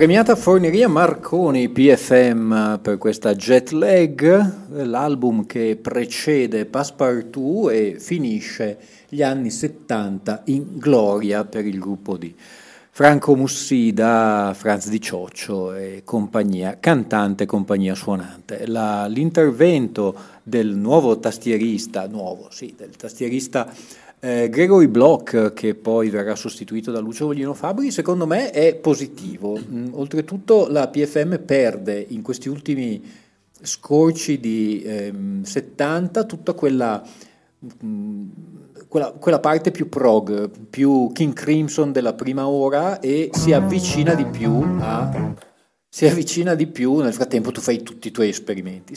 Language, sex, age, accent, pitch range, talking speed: Italian, male, 40-59, native, 110-160 Hz, 115 wpm